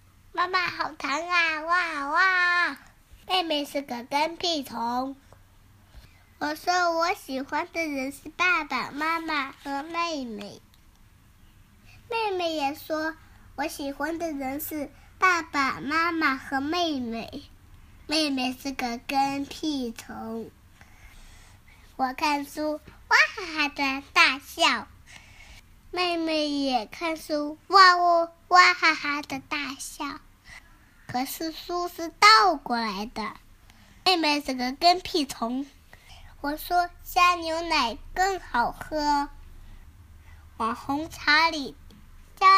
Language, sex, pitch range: Chinese, male, 260-335 Hz